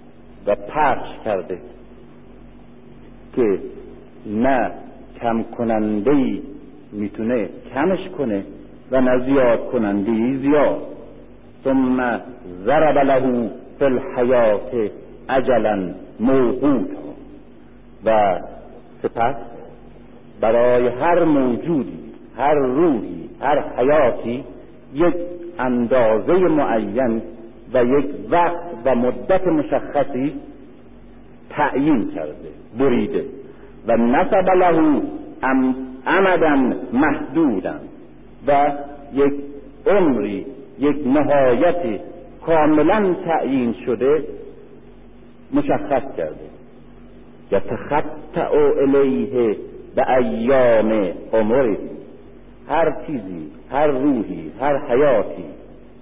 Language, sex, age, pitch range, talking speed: Persian, male, 50-69, 125-195 Hz, 75 wpm